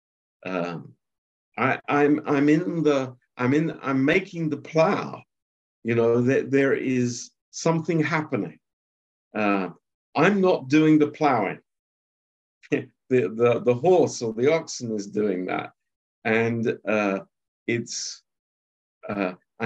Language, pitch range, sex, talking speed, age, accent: Romanian, 90-135 Hz, male, 120 wpm, 50-69, British